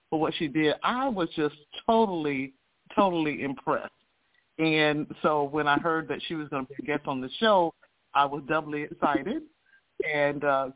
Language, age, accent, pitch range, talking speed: English, 50-69, American, 145-175 Hz, 180 wpm